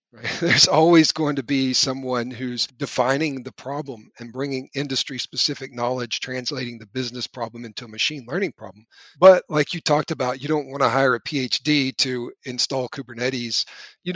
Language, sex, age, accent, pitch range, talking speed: English, male, 40-59, American, 125-145 Hz, 170 wpm